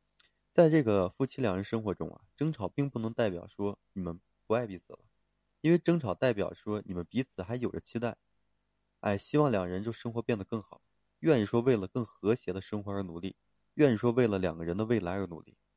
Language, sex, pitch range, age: Chinese, male, 95-125 Hz, 20-39